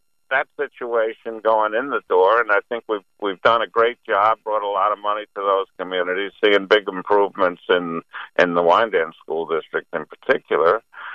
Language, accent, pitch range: English, American, 100-155 Hz